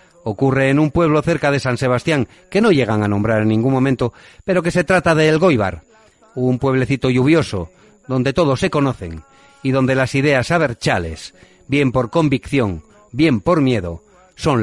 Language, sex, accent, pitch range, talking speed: Spanish, male, Spanish, 105-145 Hz, 170 wpm